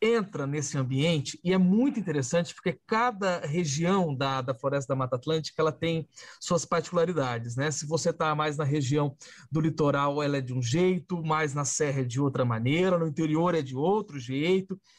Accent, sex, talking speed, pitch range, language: Brazilian, male, 190 wpm, 155-205 Hz, English